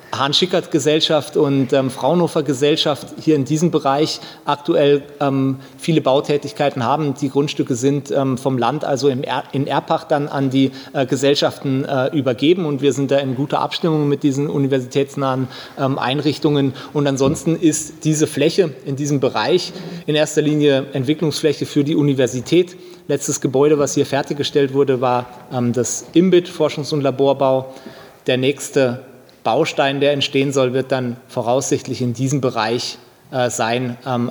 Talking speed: 150 wpm